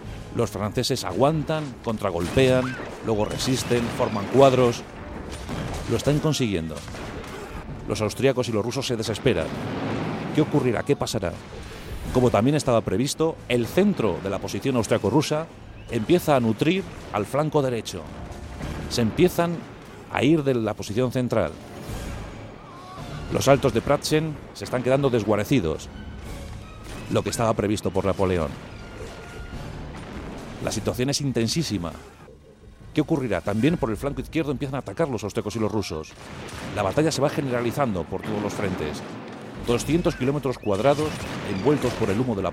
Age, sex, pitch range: 40-59, male, 105-135 Hz